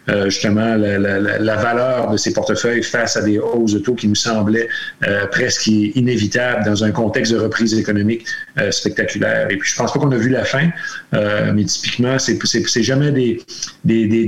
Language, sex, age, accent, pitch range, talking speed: French, male, 40-59, Canadian, 110-130 Hz, 210 wpm